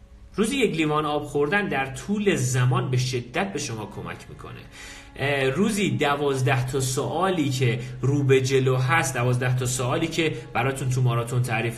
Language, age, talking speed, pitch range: Persian, 40-59, 155 wpm, 120-185 Hz